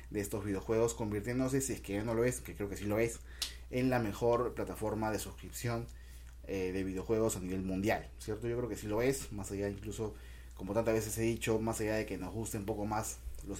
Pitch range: 95-120 Hz